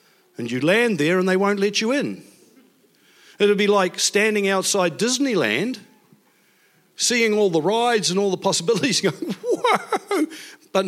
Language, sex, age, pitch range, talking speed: English, male, 50-69, 165-210 Hz, 150 wpm